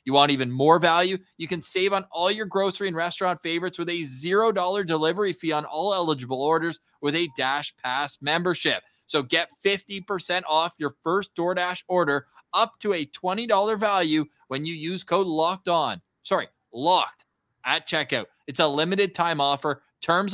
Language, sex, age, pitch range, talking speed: English, male, 20-39, 145-200 Hz, 170 wpm